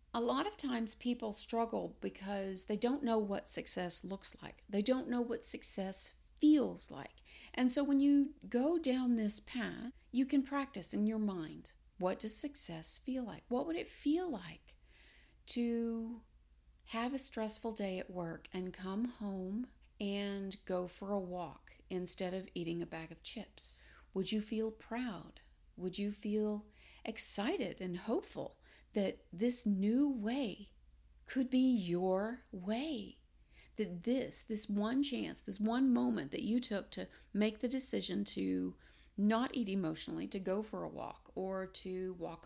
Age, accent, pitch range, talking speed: 40-59, American, 185-255 Hz, 160 wpm